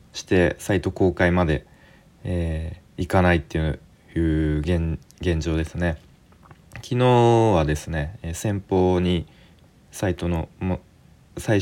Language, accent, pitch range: Japanese, native, 80-110 Hz